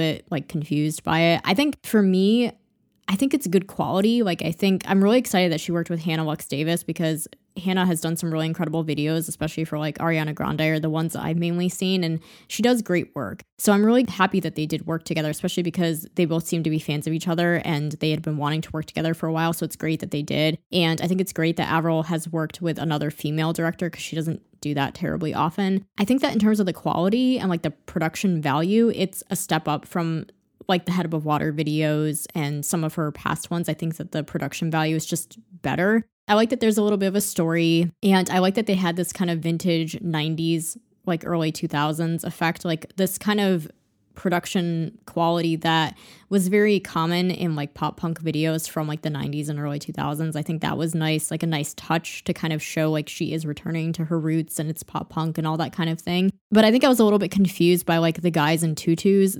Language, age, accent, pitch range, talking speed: English, 20-39, American, 155-185 Hz, 240 wpm